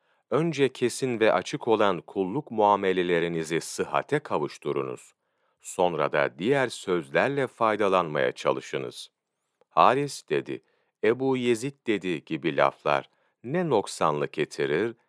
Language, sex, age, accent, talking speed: Turkish, male, 40-59, native, 100 wpm